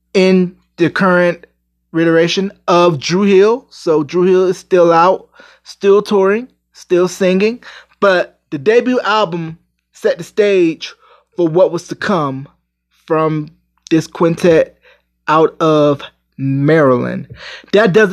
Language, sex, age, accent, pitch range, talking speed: English, male, 20-39, American, 165-205 Hz, 120 wpm